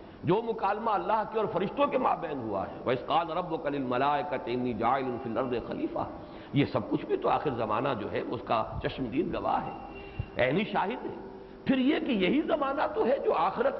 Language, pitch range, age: English, 130-220 Hz, 60-79